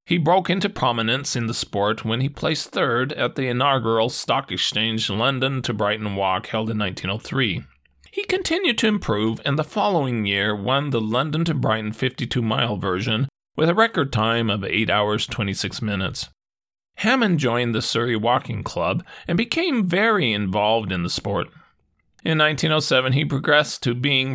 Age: 40-59